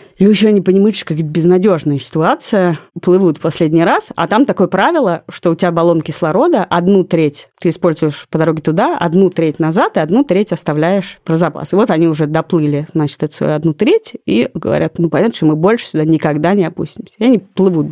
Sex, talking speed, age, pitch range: female, 205 wpm, 30-49, 160-200 Hz